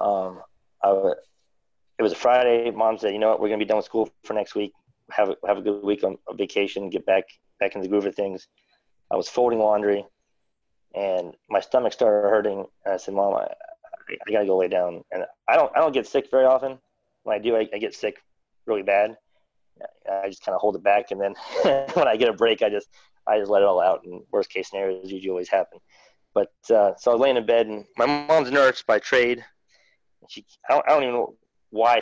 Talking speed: 240 wpm